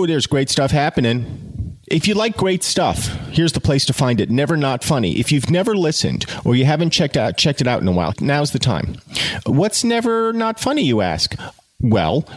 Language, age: English, 40-59